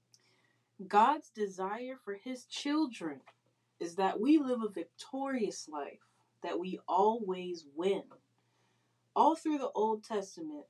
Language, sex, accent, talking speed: English, female, American, 120 wpm